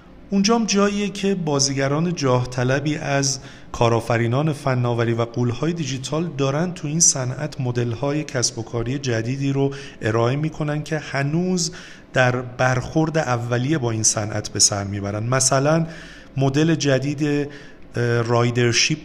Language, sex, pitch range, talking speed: Persian, male, 120-145 Hz, 125 wpm